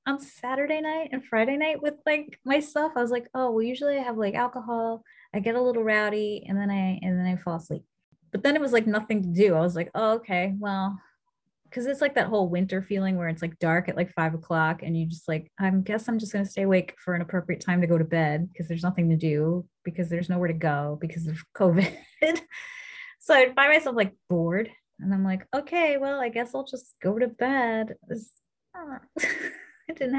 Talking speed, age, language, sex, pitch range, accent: 225 wpm, 20-39, English, female, 175-240 Hz, American